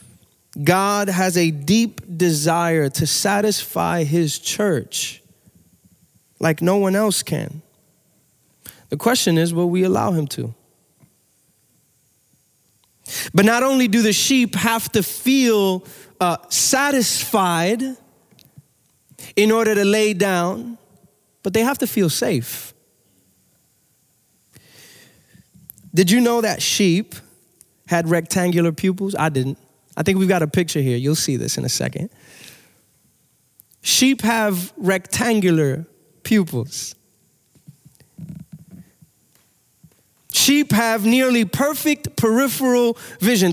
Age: 20-39